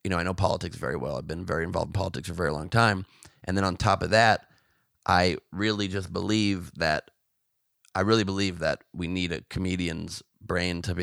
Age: 30-49